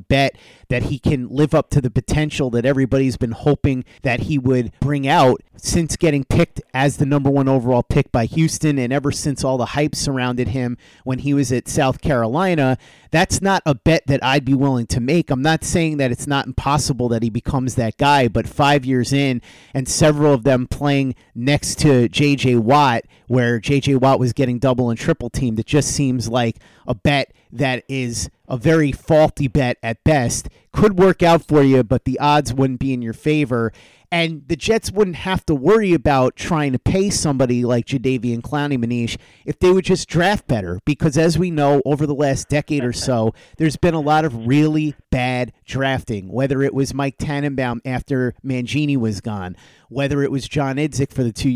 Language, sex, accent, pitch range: English, male, American, 125-150 Hz